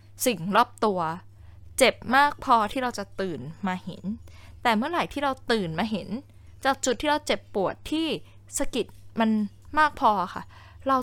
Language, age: Thai, 10-29